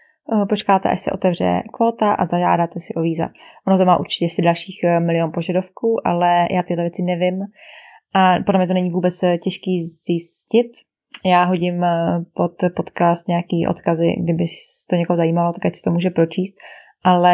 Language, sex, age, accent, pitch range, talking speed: Czech, female, 20-39, native, 175-200 Hz, 165 wpm